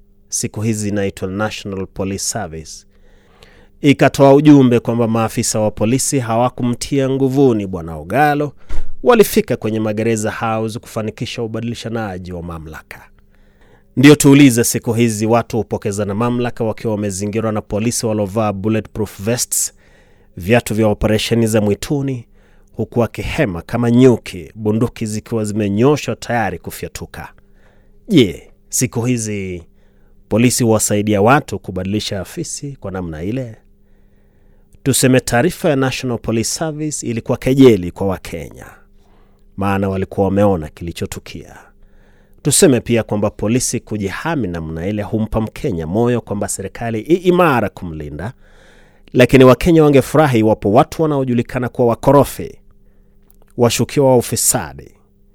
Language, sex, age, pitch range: Swahili, male, 30-49, 100-125 Hz